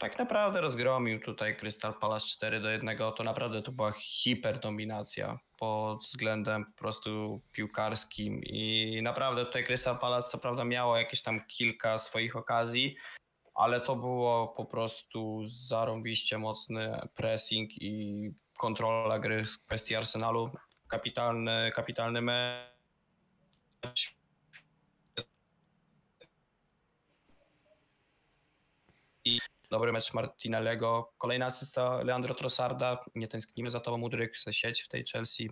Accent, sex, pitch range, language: native, male, 110-125 Hz, Polish